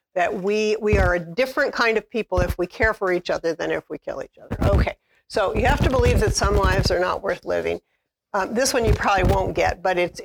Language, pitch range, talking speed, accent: English, 185-235 Hz, 250 wpm, American